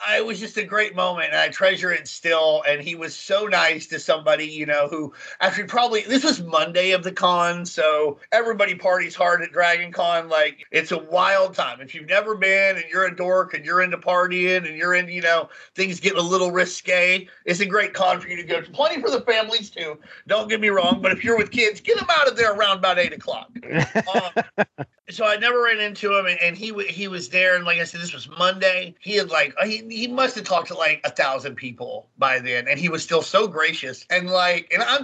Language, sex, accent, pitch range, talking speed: English, male, American, 165-210 Hz, 235 wpm